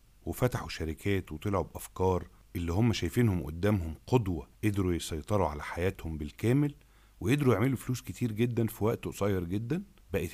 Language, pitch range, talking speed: Arabic, 90-120 Hz, 140 wpm